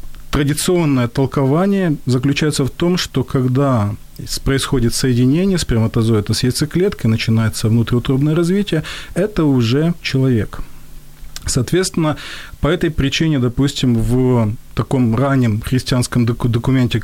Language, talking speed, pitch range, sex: Ukrainian, 100 wpm, 120-155 Hz, male